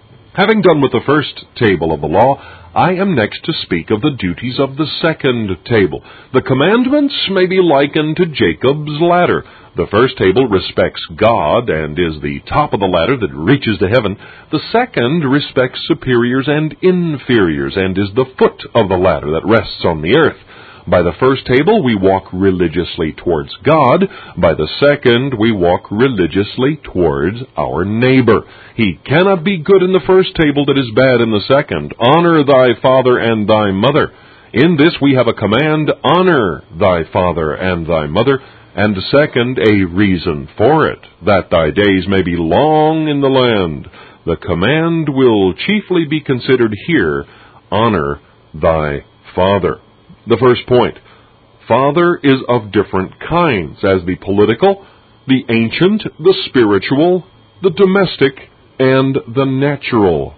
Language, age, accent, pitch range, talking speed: English, 50-69, American, 105-155 Hz, 155 wpm